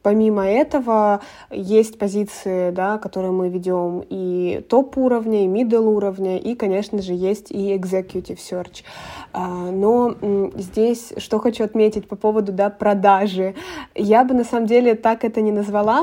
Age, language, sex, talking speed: 20-39, Russian, female, 140 wpm